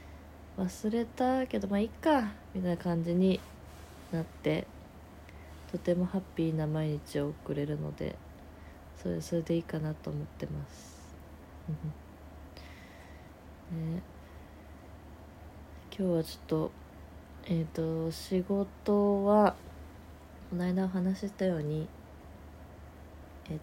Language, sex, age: Japanese, female, 20-39